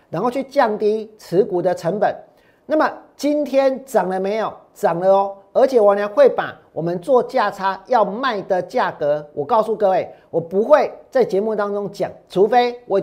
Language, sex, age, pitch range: Chinese, male, 40-59, 190-265 Hz